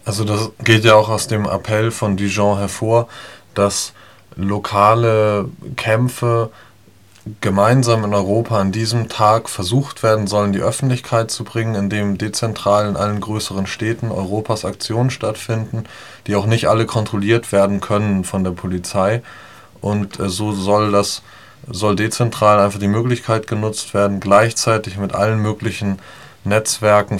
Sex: male